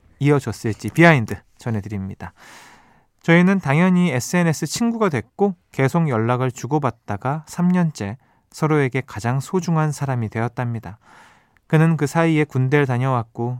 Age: 20-39